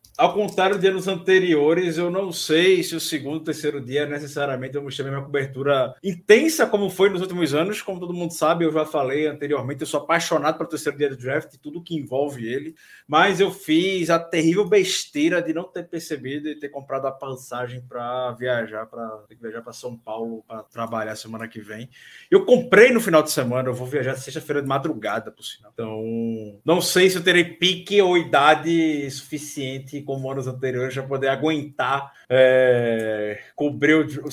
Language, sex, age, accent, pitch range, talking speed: Portuguese, male, 20-39, Brazilian, 125-165 Hz, 190 wpm